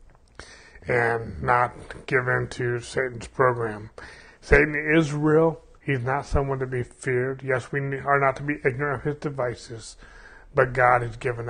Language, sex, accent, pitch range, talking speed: English, male, American, 115-135 Hz, 150 wpm